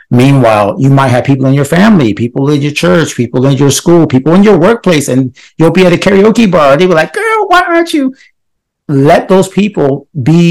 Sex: male